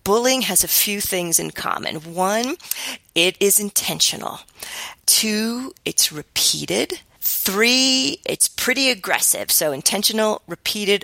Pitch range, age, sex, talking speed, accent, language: 175-230 Hz, 30-49, female, 115 wpm, American, English